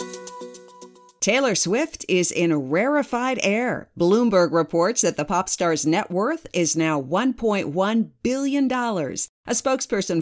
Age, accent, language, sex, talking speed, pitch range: 50-69, American, English, female, 115 wpm, 160-235 Hz